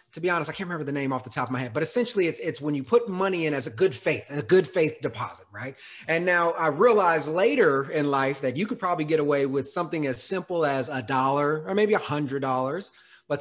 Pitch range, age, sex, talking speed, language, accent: 135-175 Hz, 30-49, male, 260 wpm, English, American